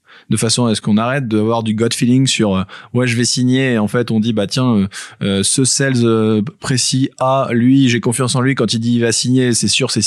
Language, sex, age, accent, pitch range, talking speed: French, male, 20-39, French, 110-130 Hz, 255 wpm